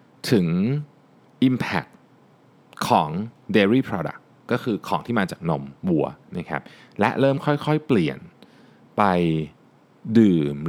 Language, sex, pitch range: Thai, male, 90-145 Hz